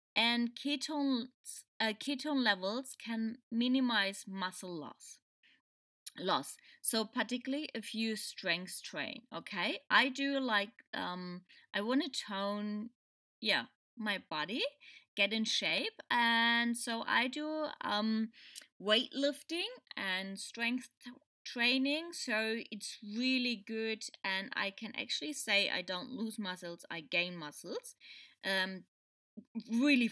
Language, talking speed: English, 110 wpm